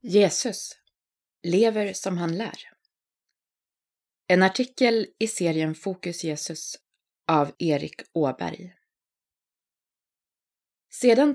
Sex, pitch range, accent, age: female, 160-215 Hz, native, 20-39